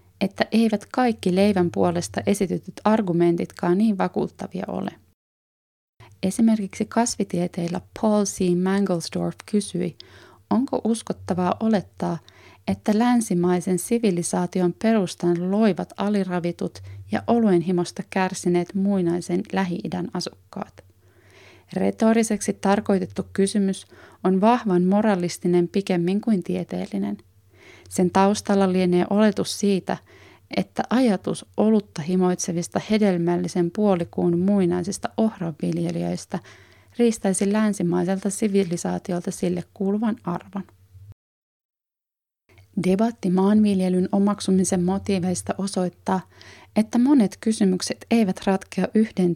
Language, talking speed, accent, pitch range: Finnish, 85 wpm, native, 175-205 Hz